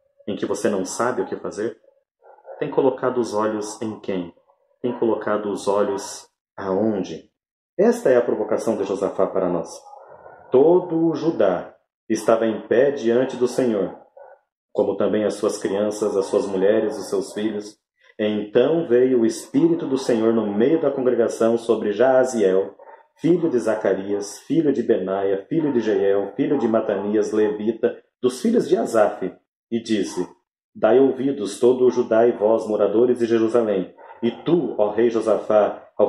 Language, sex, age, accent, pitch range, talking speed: Portuguese, male, 40-59, Brazilian, 105-140 Hz, 155 wpm